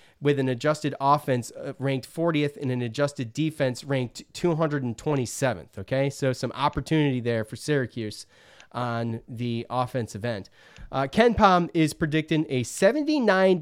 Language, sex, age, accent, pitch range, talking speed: English, male, 30-49, American, 115-145 Hz, 130 wpm